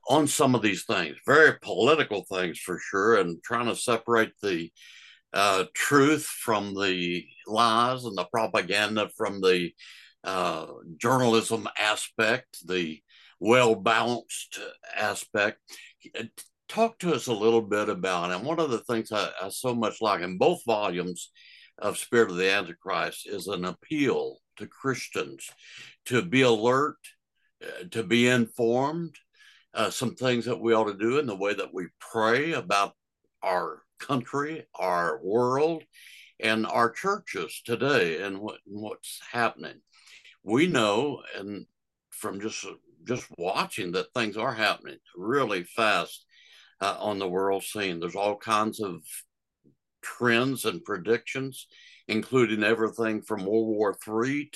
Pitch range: 105-135 Hz